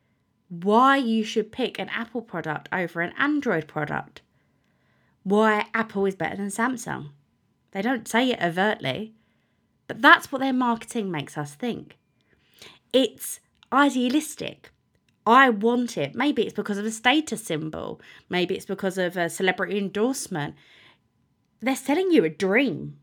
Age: 20-39